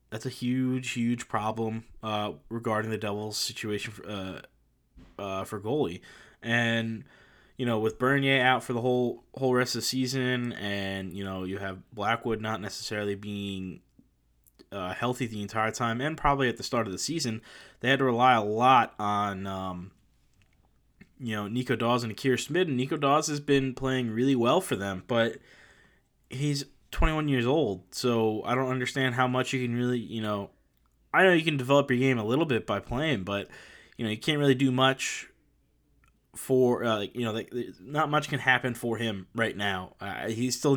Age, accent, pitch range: 20-39, American, 105-130 Hz